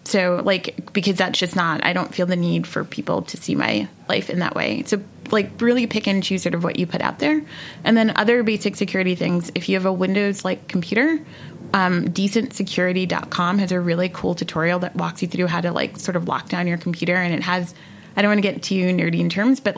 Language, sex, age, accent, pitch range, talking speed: English, female, 20-39, American, 175-210 Hz, 240 wpm